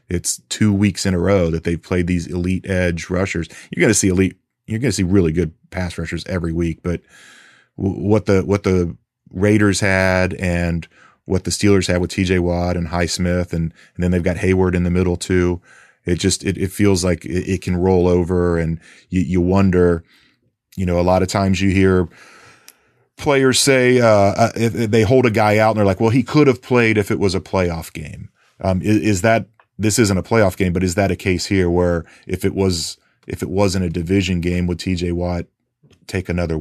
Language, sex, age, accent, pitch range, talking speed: English, male, 30-49, American, 85-95 Hz, 215 wpm